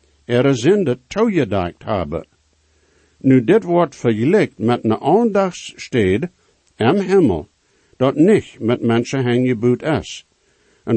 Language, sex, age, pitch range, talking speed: English, male, 60-79, 115-150 Hz, 125 wpm